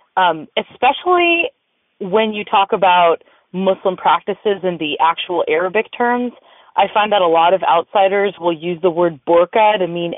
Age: 20-39